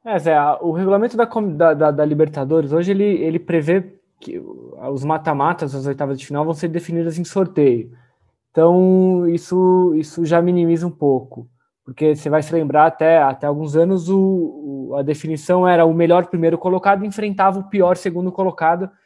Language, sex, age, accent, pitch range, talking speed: Portuguese, male, 20-39, Brazilian, 155-180 Hz, 175 wpm